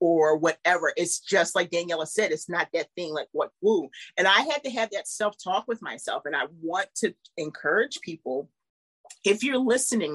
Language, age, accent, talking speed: English, 40-59, American, 190 wpm